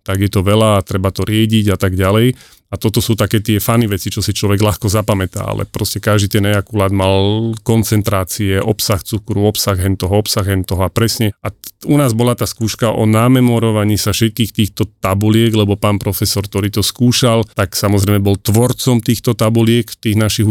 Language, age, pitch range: Slovak, 30-49, 100-115 Hz